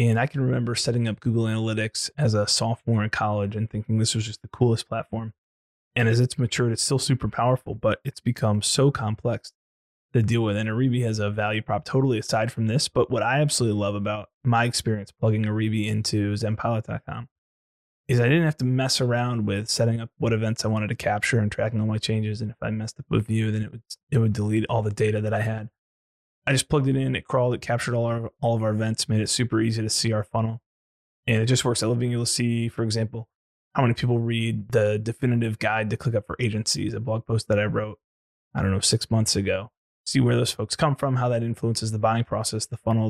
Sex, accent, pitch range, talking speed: male, American, 110-125 Hz, 240 wpm